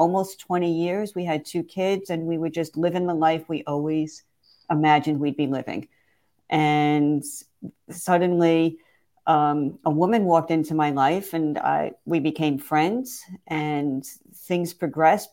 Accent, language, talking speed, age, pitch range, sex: American, English, 140 wpm, 50-69, 155-190 Hz, female